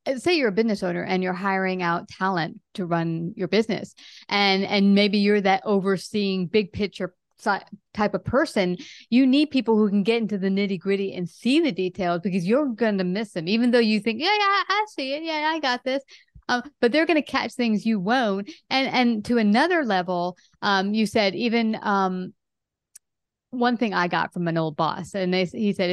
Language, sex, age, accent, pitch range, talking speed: English, female, 30-49, American, 190-240 Hz, 205 wpm